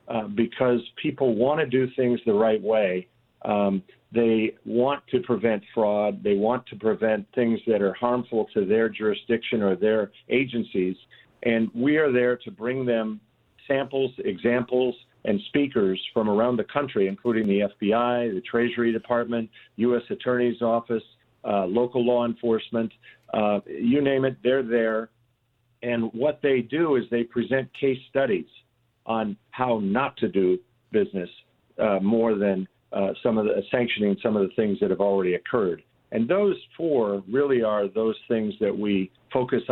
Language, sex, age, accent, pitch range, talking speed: English, male, 50-69, American, 105-125 Hz, 155 wpm